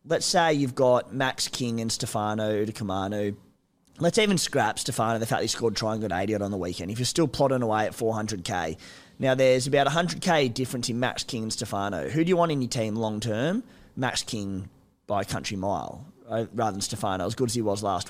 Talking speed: 210 wpm